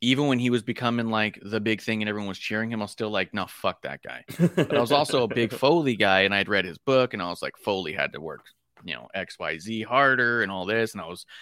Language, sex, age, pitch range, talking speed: English, male, 30-49, 105-120 Hz, 290 wpm